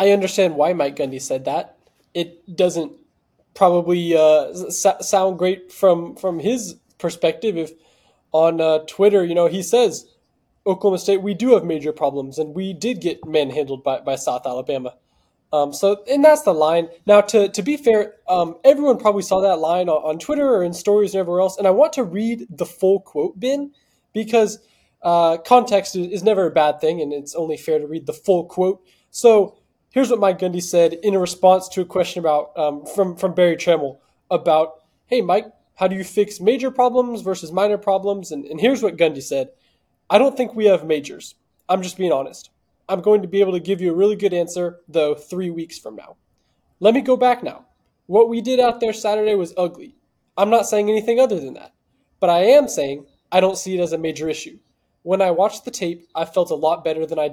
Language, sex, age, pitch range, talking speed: English, male, 10-29, 165-210 Hz, 210 wpm